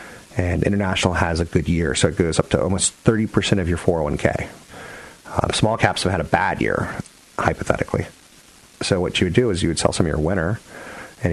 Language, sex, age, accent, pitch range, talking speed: English, male, 40-59, American, 80-95 Hz, 205 wpm